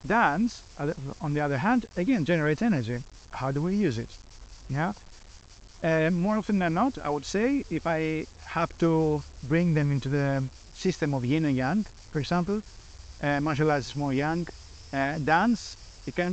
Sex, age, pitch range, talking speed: male, 30-49, 125-160 Hz, 175 wpm